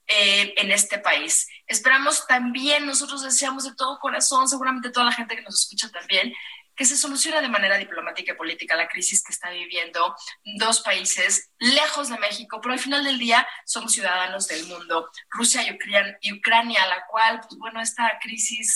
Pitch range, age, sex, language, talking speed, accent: 180-240 Hz, 30-49, female, Spanish, 175 wpm, Mexican